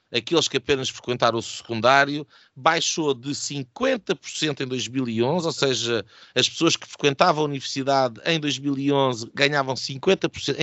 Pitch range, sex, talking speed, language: 120-150 Hz, male, 130 wpm, Portuguese